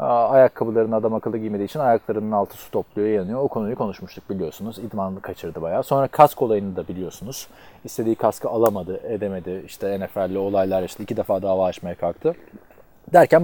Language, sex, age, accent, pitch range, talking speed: Turkish, male, 30-49, native, 100-140 Hz, 165 wpm